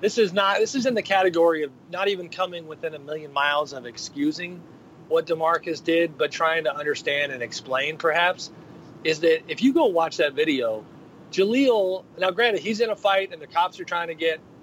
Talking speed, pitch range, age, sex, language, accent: 205 wpm, 150-195 Hz, 40-59, male, English, American